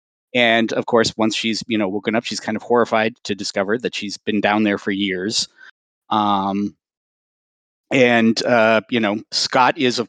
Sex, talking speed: male, 180 wpm